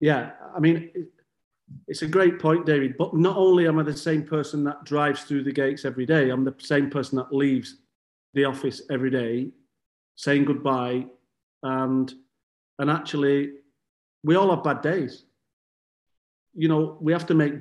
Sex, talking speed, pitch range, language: male, 165 wpm, 135-155 Hz, English